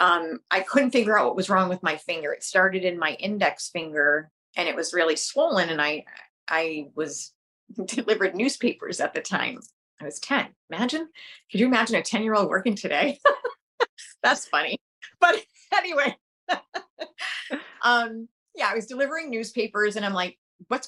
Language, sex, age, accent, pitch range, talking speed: English, female, 30-49, American, 170-240 Hz, 165 wpm